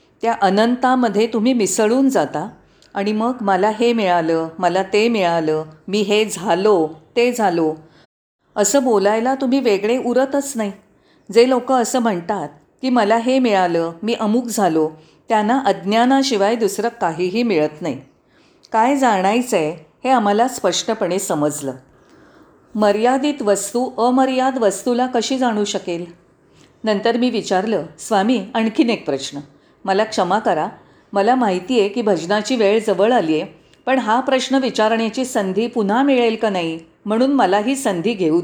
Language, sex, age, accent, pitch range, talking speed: Marathi, female, 40-59, native, 185-245 Hz, 135 wpm